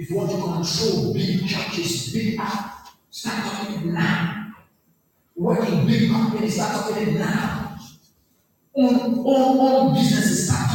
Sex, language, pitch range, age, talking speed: male, English, 180-255 Hz, 50-69, 130 wpm